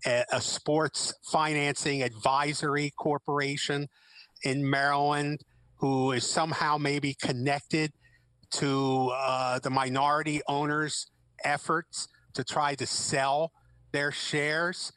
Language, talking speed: English, 95 wpm